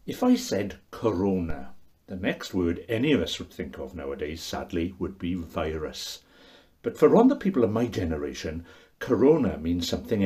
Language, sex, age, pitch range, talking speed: English, male, 60-79, 85-110 Hz, 170 wpm